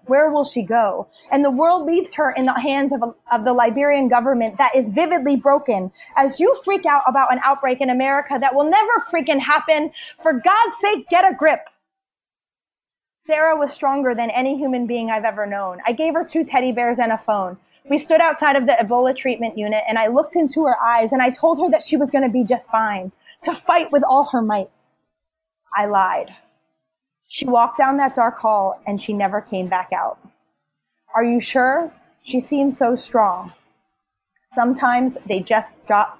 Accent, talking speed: American, 195 wpm